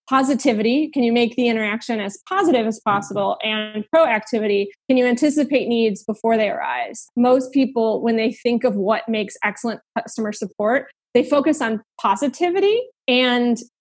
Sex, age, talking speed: female, 20-39, 150 wpm